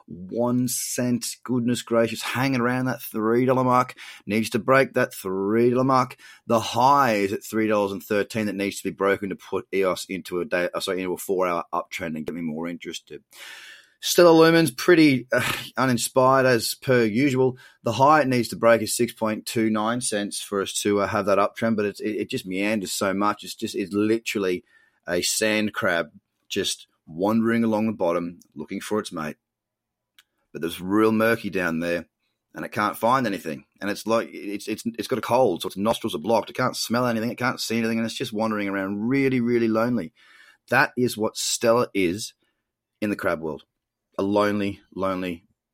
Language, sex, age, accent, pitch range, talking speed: English, male, 30-49, Australian, 105-125 Hz, 195 wpm